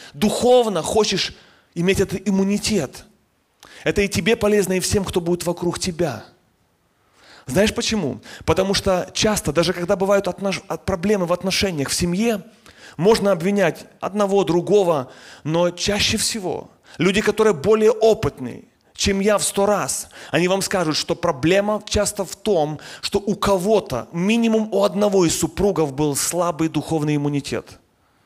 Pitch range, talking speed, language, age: 165-205 Hz, 135 wpm, Russian, 30-49